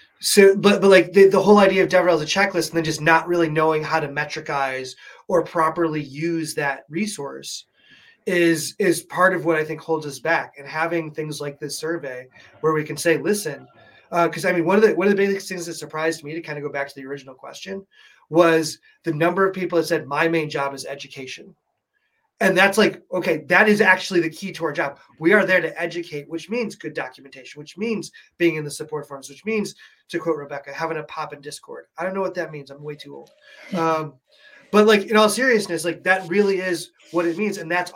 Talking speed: 230 wpm